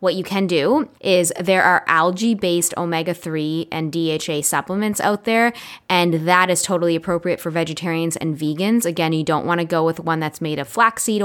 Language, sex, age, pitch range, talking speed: English, female, 20-39, 165-200 Hz, 180 wpm